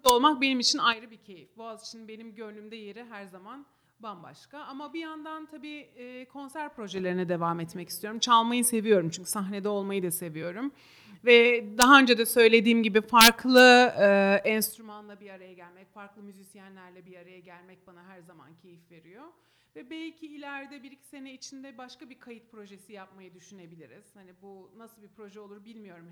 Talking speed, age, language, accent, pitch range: 165 wpm, 40-59, Turkish, native, 200-255 Hz